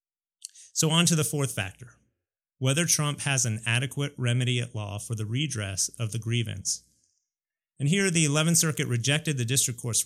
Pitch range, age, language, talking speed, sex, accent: 110-145 Hz, 30-49, English, 175 wpm, male, American